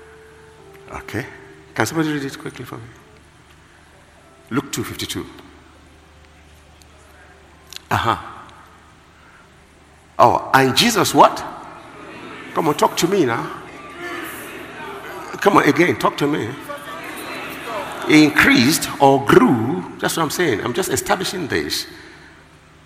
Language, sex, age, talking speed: English, male, 60-79, 100 wpm